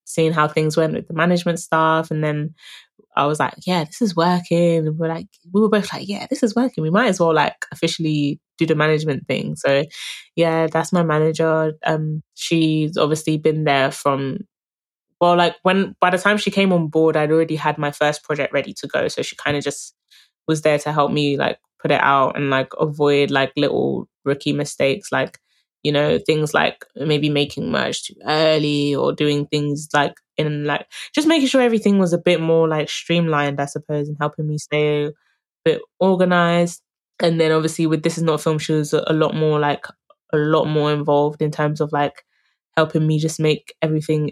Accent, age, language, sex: British, 20-39, English, female